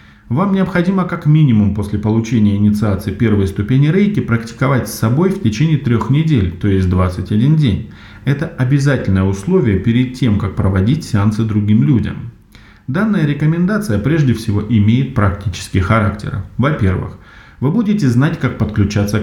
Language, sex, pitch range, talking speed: Russian, male, 100-140 Hz, 135 wpm